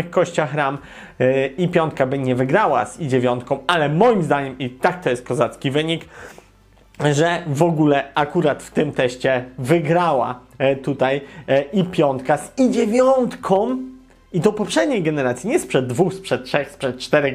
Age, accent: 30-49, native